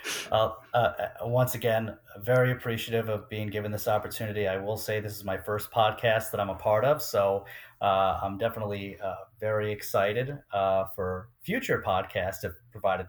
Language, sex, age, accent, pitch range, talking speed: English, male, 30-49, American, 100-120 Hz, 170 wpm